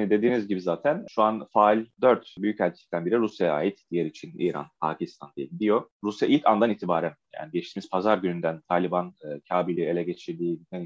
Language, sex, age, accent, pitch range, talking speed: Turkish, male, 30-49, native, 95-140 Hz, 165 wpm